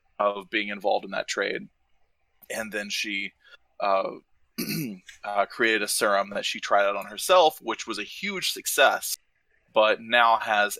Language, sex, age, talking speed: English, male, 20-39, 155 wpm